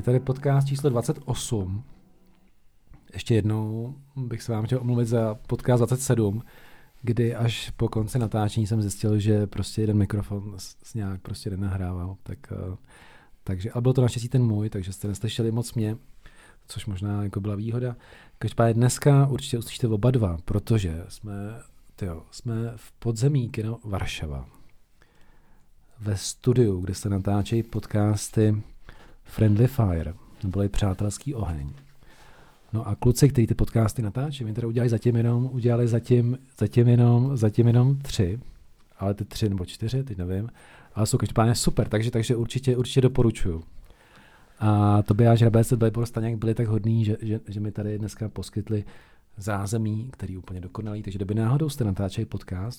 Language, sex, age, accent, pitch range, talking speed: Czech, male, 40-59, native, 100-120 Hz, 150 wpm